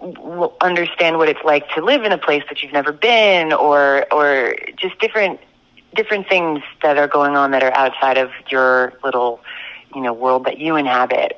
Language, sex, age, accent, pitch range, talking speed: English, female, 30-49, American, 130-160 Hz, 185 wpm